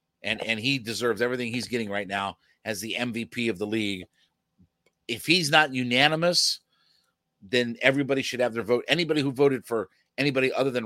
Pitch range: 115-145 Hz